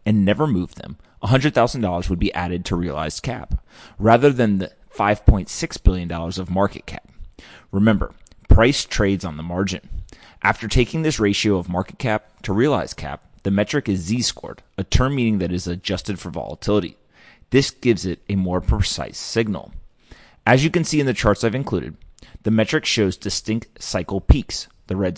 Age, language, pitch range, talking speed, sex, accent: 30-49, English, 90-115 Hz, 170 wpm, male, American